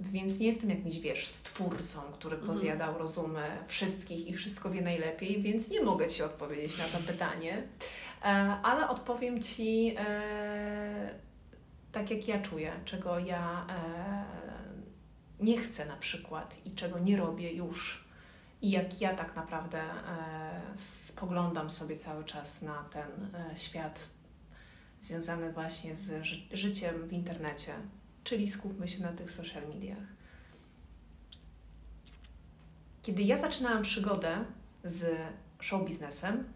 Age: 30-49